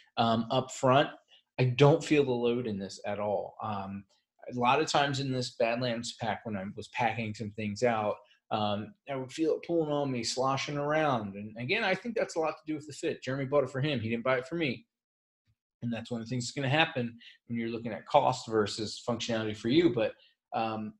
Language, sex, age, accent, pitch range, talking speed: English, male, 30-49, American, 115-140 Hz, 235 wpm